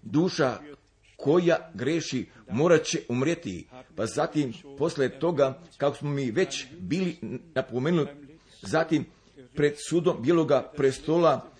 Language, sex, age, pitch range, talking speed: Croatian, male, 50-69, 135-165 Hz, 110 wpm